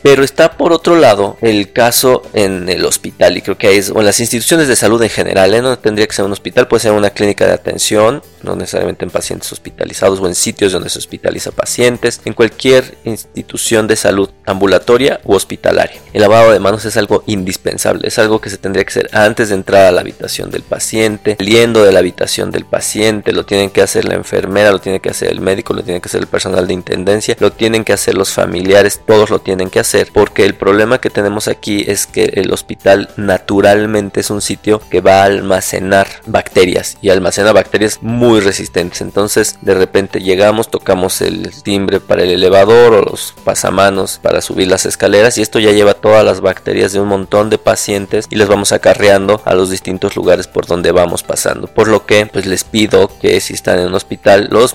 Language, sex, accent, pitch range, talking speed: Spanish, male, Mexican, 100-110 Hz, 210 wpm